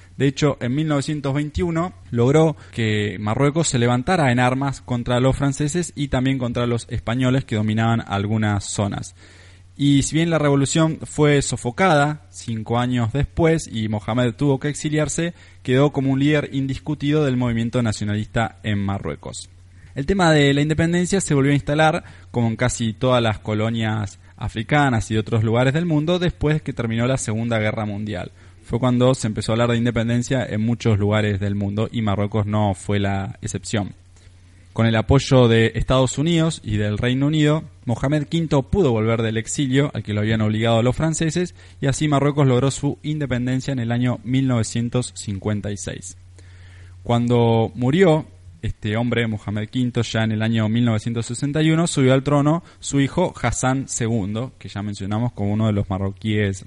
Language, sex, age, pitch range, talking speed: Spanish, male, 20-39, 105-140 Hz, 165 wpm